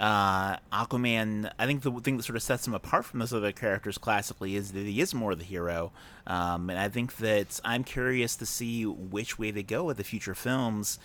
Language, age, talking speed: English, 30-49, 230 wpm